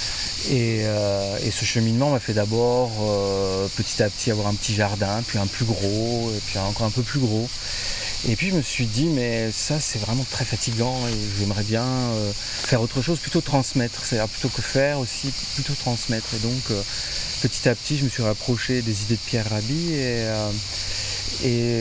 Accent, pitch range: French, 105-130 Hz